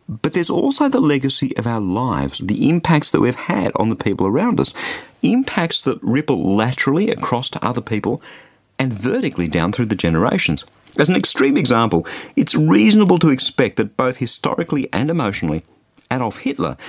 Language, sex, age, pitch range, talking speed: English, male, 50-69, 100-155 Hz, 165 wpm